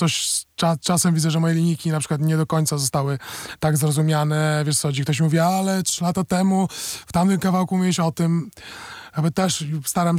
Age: 20-39